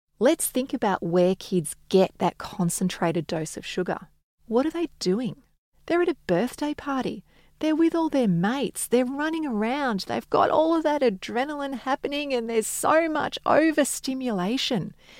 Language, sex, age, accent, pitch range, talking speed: English, female, 30-49, Australian, 180-250 Hz, 160 wpm